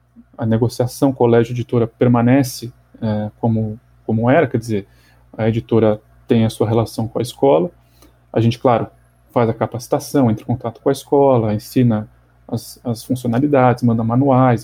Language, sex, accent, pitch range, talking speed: Portuguese, male, Brazilian, 110-130 Hz, 165 wpm